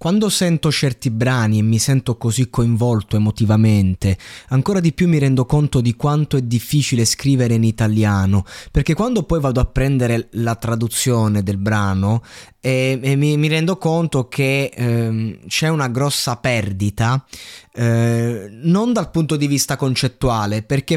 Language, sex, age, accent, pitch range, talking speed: Italian, male, 20-39, native, 115-140 Hz, 150 wpm